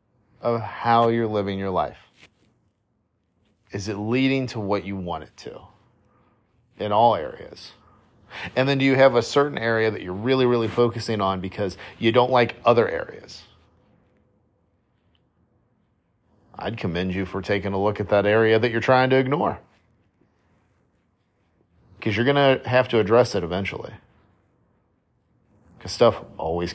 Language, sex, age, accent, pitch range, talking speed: English, male, 40-59, American, 95-115 Hz, 145 wpm